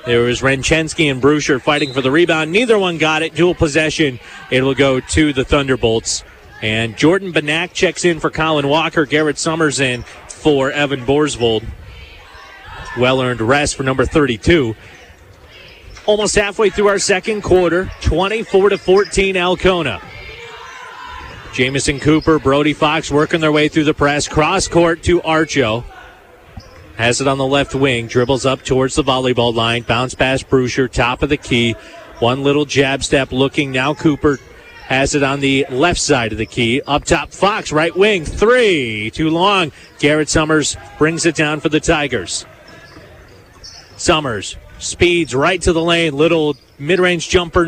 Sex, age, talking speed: male, 30-49, 155 wpm